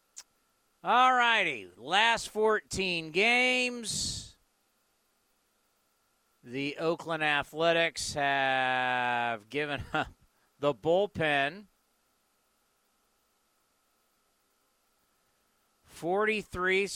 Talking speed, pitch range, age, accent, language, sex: 50 wpm, 120-185 Hz, 50-69, American, English, male